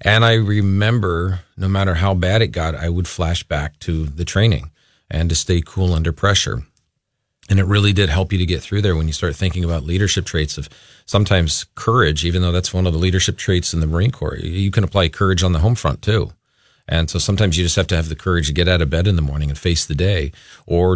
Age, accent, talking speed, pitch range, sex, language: 40-59, American, 245 wpm, 85-105 Hz, male, English